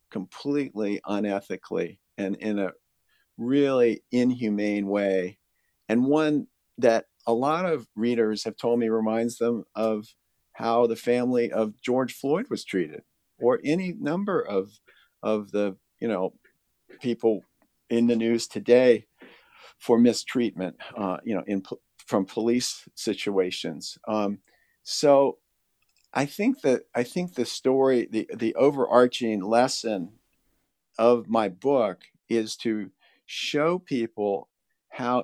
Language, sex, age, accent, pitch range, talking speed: English, male, 50-69, American, 105-130 Hz, 125 wpm